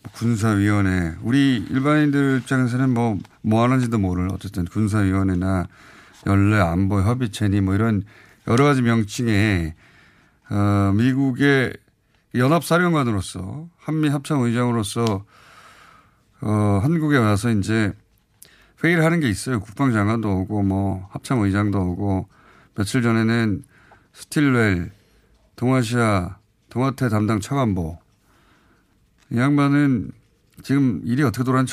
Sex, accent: male, native